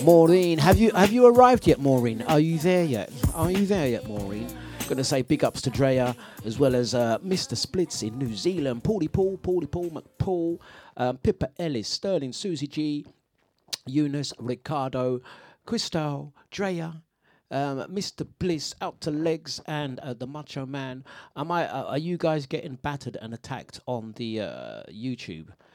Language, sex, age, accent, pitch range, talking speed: English, male, 50-69, British, 115-160 Hz, 175 wpm